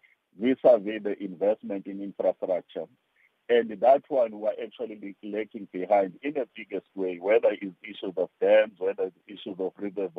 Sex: male